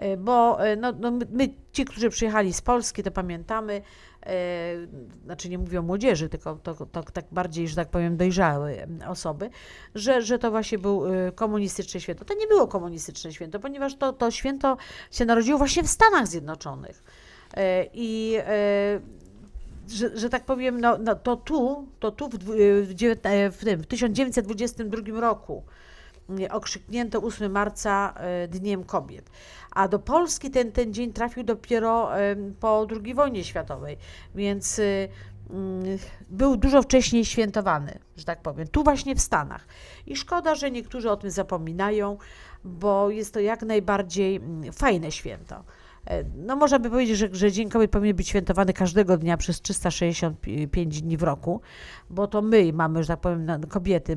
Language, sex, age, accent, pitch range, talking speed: Polish, female, 50-69, native, 180-230 Hz, 150 wpm